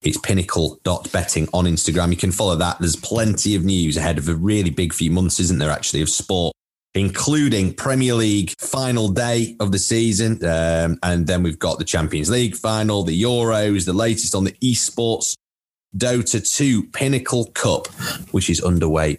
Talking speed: 170 wpm